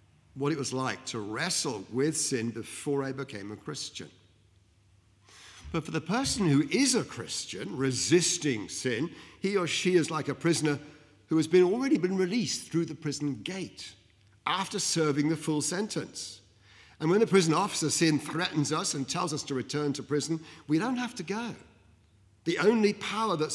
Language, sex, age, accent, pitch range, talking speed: English, male, 50-69, British, 105-165 Hz, 175 wpm